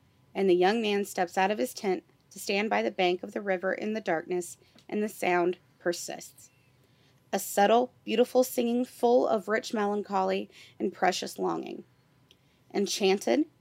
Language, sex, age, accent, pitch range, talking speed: English, female, 30-49, American, 170-215 Hz, 160 wpm